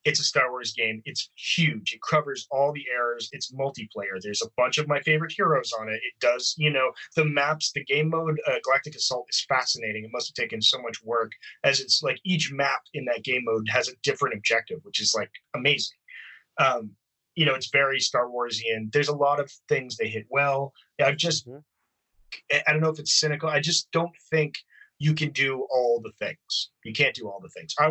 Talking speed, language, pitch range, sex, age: 215 wpm, English, 120-155 Hz, male, 30-49